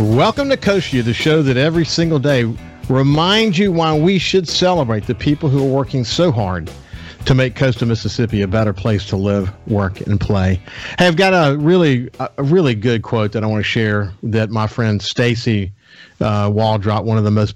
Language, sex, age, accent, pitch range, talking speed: English, male, 50-69, American, 105-145 Hz, 200 wpm